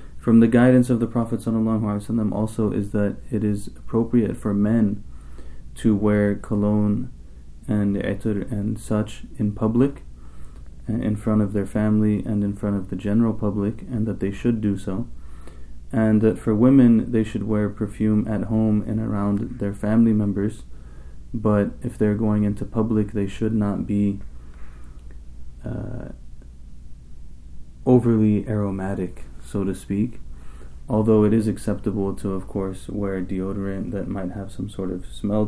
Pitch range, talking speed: 90-110 Hz, 150 wpm